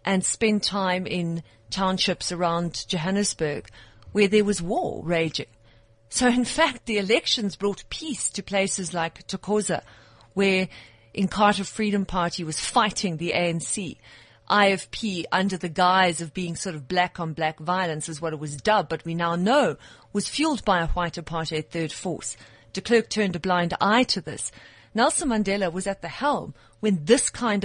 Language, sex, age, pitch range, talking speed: English, female, 40-59, 170-225 Hz, 165 wpm